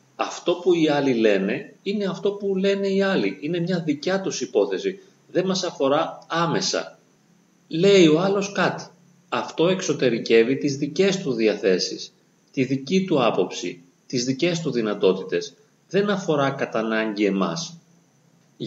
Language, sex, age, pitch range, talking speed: Greek, male, 30-49, 120-180 Hz, 135 wpm